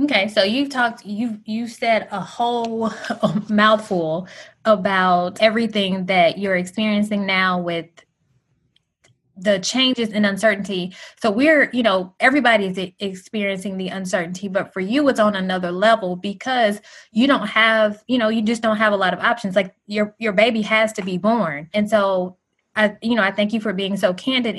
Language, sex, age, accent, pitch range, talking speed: English, female, 20-39, American, 195-225 Hz, 170 wpm